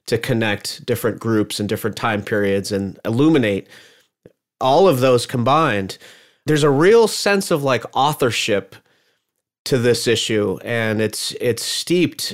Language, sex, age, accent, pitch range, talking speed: English, male, 30-49, American, 115-140 Hz, 135 wpm